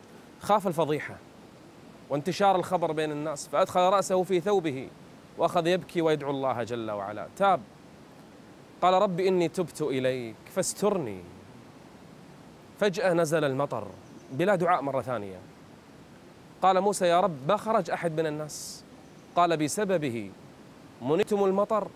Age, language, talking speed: 30-49, Arabic, 120 wpm